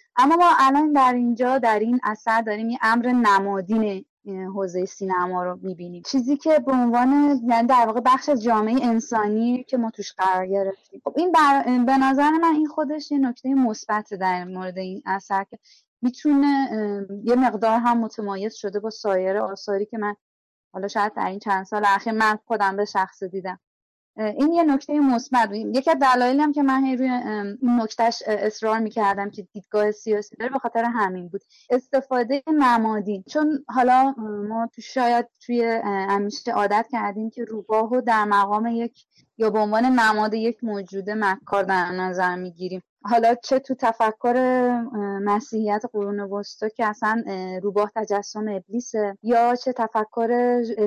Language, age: Persian, 30-49